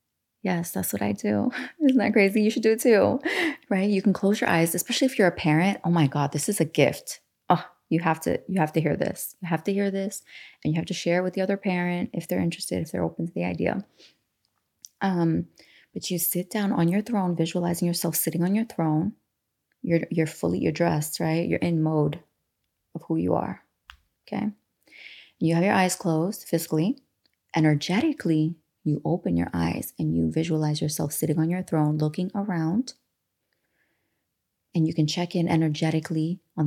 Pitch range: 155-180 Hz